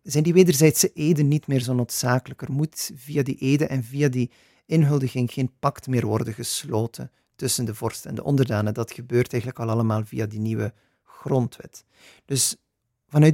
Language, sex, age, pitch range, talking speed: Dutch, male, 40-59, 120-140 Hz, 175 wpm